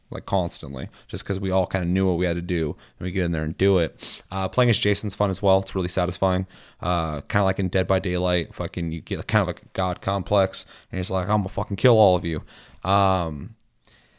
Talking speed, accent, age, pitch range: 250 wpm, American, 30-49, 90-100 Hz